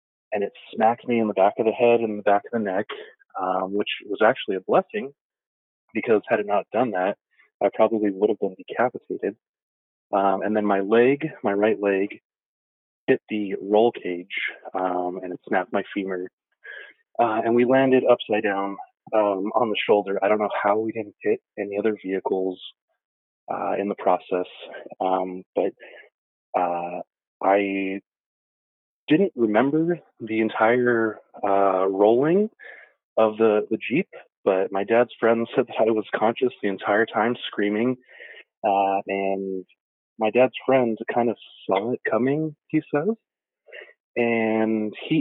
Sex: male